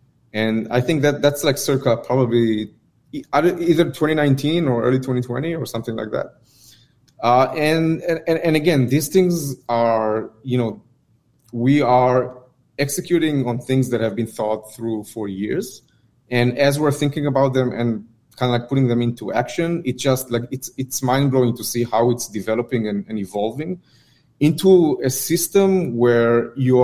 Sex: male